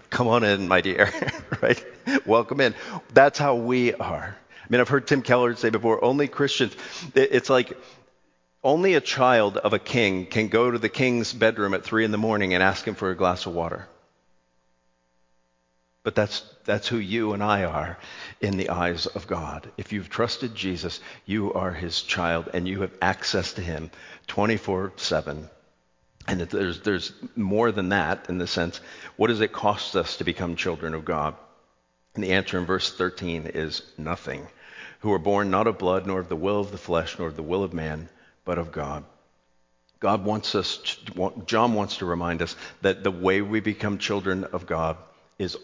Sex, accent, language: male, American, English